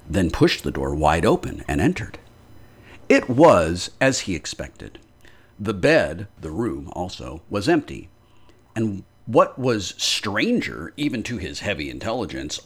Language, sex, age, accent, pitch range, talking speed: English, male, 50-69, American, 90-120 Hz, 135 wpm